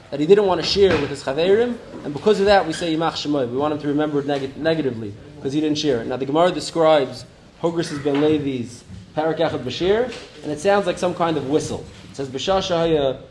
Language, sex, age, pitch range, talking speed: English, male, 20-39, 140-180 Hz, 230 wpm